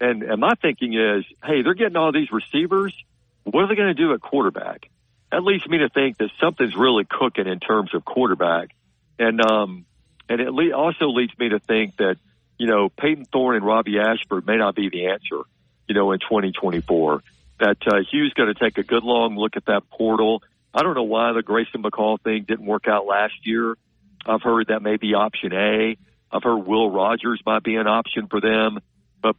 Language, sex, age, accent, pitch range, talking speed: English, male, 50-69, American, 100-120 Hz, 210 wpm